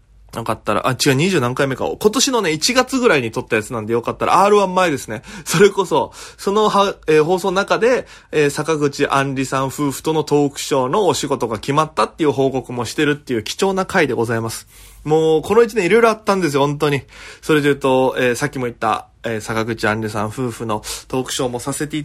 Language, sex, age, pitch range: Japanese, male, 20-39, 120-155 Hz